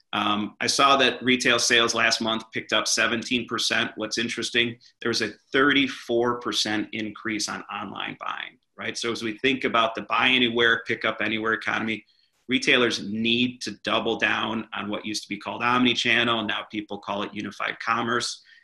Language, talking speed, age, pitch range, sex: English, 170 wpm, 30-49, 105-125 Hz, male